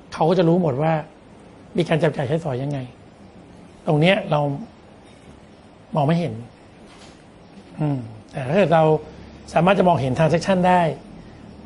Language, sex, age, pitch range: Thai, male, 60-79, 145-180 Hz